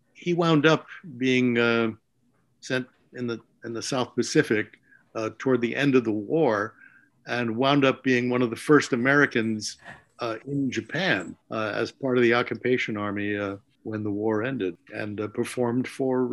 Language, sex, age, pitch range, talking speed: English, male, 60-79, 120-145 Hz, 175 wpm